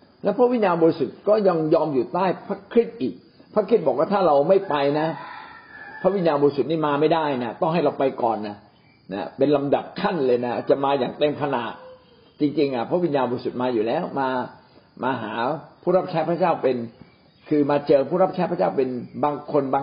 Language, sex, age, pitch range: Thai, male, 60-79, 130-185 Hz